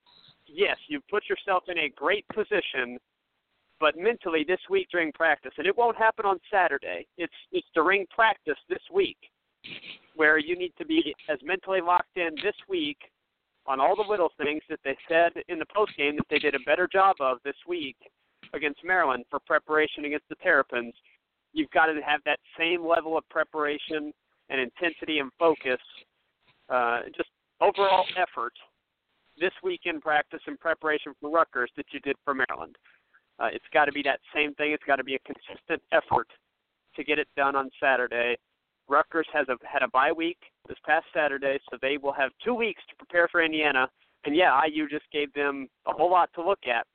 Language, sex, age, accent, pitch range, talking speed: English, male, 50-69, American, 145-190 Hz, 190 wpm